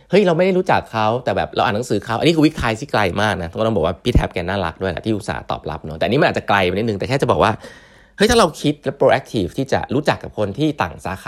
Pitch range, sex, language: 100-145 Hz, male, Thai